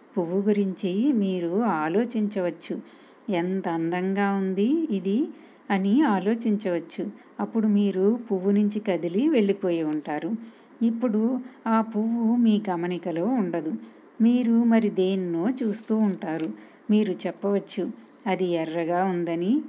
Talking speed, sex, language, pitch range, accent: 100 wpm, female, Telugu, 180-225 Hz, native